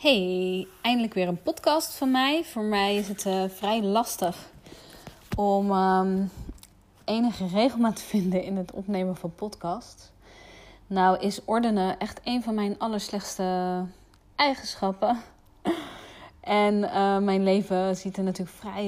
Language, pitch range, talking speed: Dutch, 180-195 Hz, 135 wpm